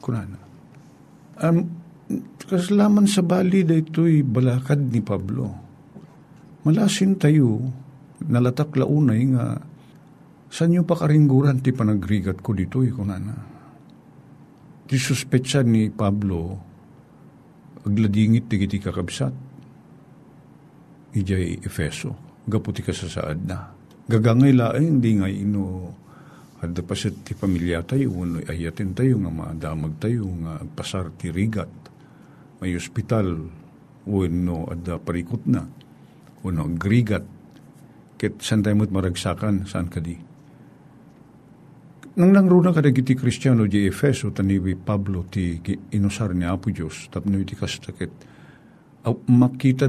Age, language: 50-69, Filipino